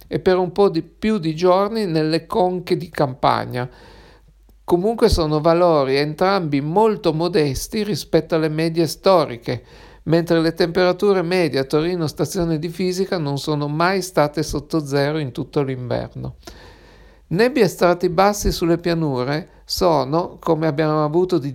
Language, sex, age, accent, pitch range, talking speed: Italian, male, 50-69, native, 150-185 Hz, 140 wpm